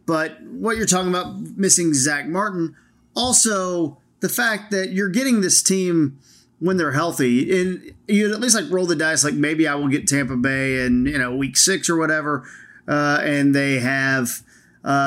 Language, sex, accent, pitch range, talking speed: English, male, American, 140-190 Hz, 185 wpm